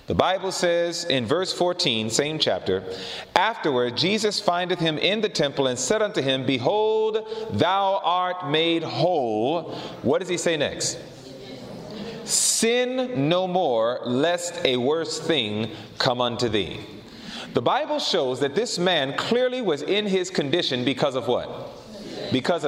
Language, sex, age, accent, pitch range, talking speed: English, male, 30-49, American, 150-215 Hz, 145 wpm